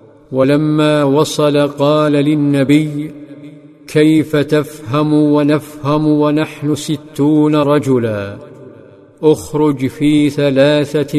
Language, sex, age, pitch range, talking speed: Arabic, male, 50-69, 140-150 Hz, 70 wpm